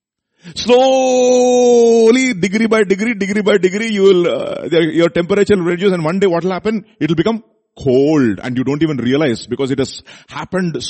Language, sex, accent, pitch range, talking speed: English, male, Indian, 155-215 Hz, 175 wpm